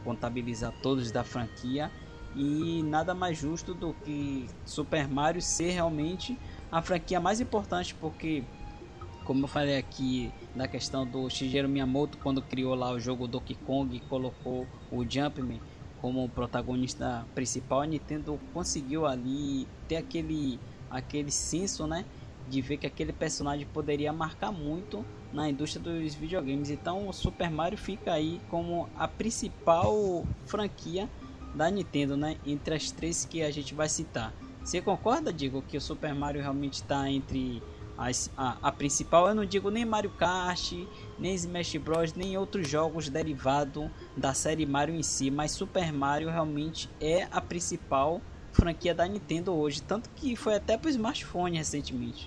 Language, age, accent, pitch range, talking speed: Portuguese, 20-39, Brazilian, 130-165 Hz, 155 wpm